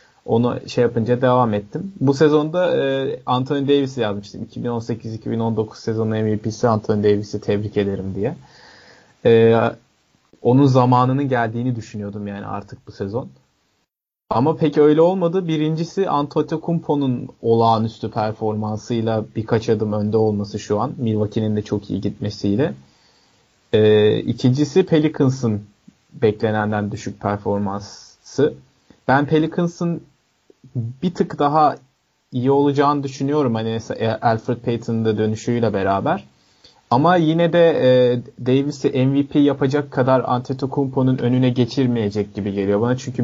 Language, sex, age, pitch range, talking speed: Turkish, male, 30-49, 110-135 Hz, 115 wpm